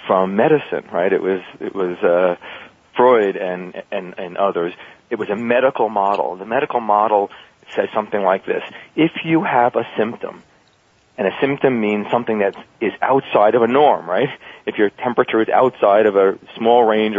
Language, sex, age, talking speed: English, male, 40-59, 180 wpm